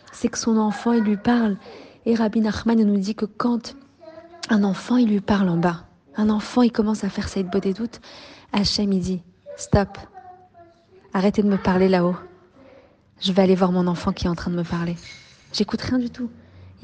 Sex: female